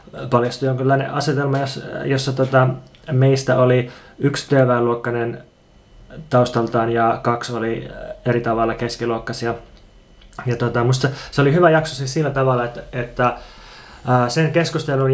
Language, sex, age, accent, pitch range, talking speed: Finnish, male, 20-39, native, 120-140 Hz, 130 wpm